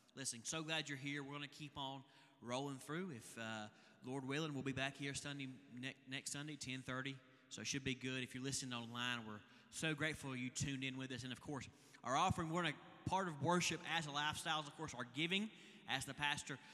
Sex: male